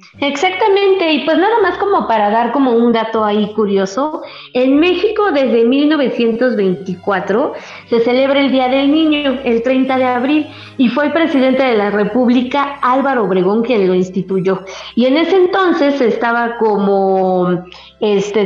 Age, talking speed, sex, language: 30-49, 150 wpm, female, Spanish